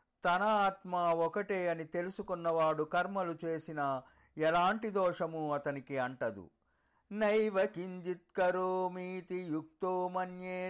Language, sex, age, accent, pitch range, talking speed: Telugu, male, 50-69, native, 150-185 Hz, 80 wpm